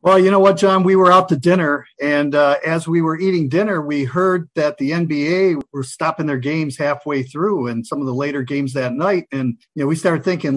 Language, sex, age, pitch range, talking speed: English, male, 50-69, 140-170 Hz, 240 wpm